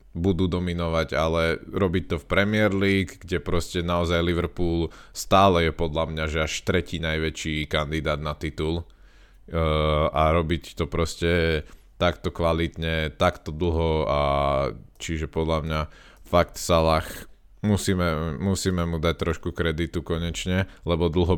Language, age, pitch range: Slovak, 20-39, 80-95 Hz